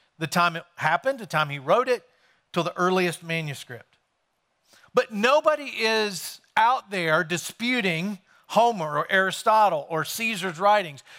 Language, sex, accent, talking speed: English, male, American, 135 wpm